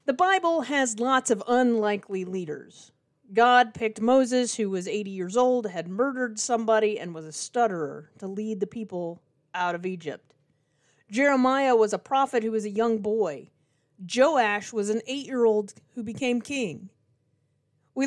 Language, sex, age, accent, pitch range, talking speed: English, female, 30-49, American, 180-250 Hz, 155 wpm